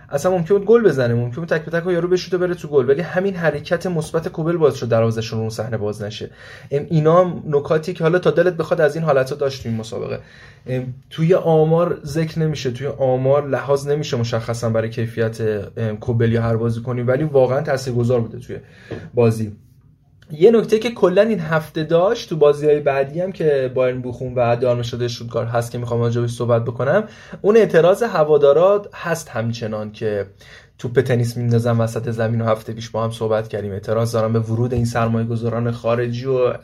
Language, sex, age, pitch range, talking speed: Persian, male, 20-39, 115-160 Hz, 195 wpm